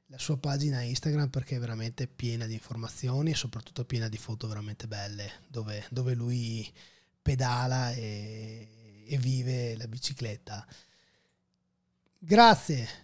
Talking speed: 120 wpm